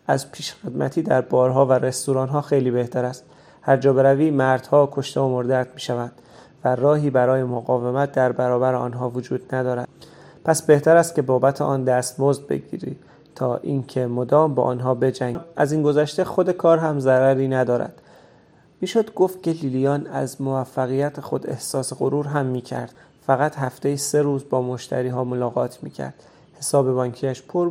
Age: 30-49